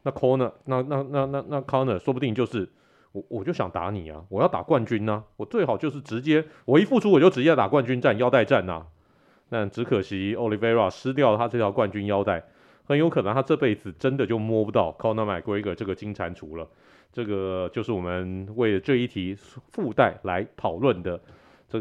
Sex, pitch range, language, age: male, 100-150 Hz, Chinese, 30-49